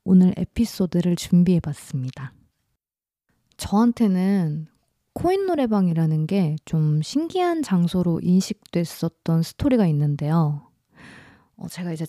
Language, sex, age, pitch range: Korean, female, 20-39, 165-215 Hz